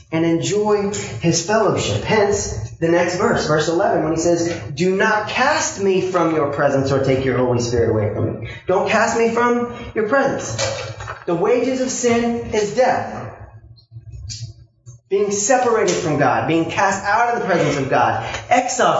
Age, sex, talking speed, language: 30-49, male, 165 wpm, English